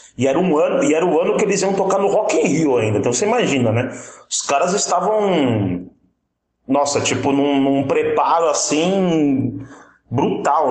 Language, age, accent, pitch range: Portuguese, 30-49, Brazilian, 125-195 Hz